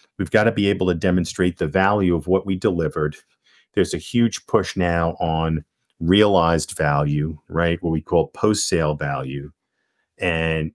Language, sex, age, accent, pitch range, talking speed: English, male, 50-69, American, 85-105 Hz, 155 wpm